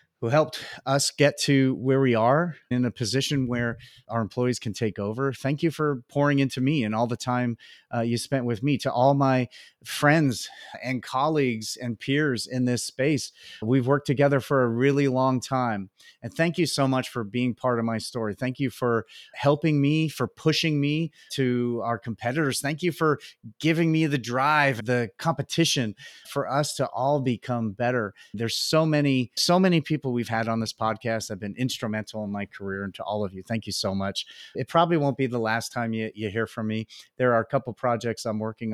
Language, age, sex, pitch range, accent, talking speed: English, 30-49, male, 105-135 Hz, American, 205 wpm